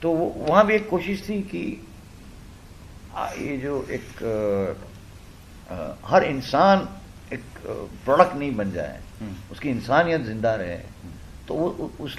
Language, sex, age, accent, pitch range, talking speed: Hindi, male, 50-69, native, 95-130 Hz, 120 wpm